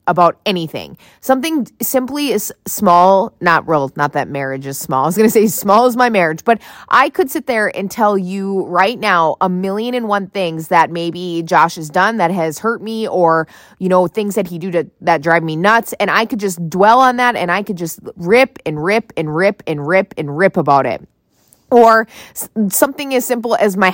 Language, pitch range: English, 170-230 Hz